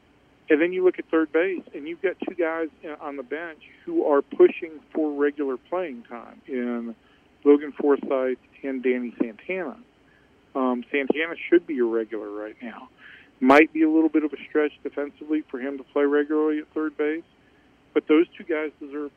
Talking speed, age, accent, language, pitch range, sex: 180 wpm, 50-69, American, English, 130-155 Hz, male